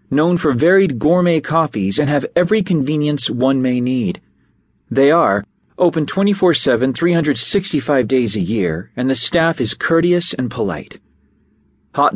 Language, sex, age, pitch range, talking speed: English, male, 40-59, 115-160 Hz, 140 wpm